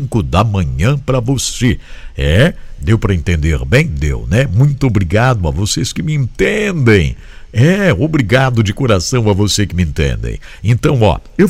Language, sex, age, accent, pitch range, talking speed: English, male, 60-79, Brazilian, 75-120 Hz, 155 wpm